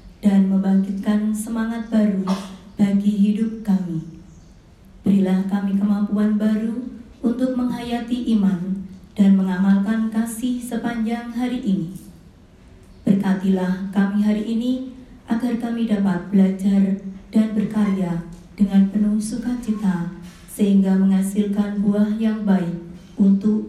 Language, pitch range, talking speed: Indonesian, 190-225 Hz, 100 wpm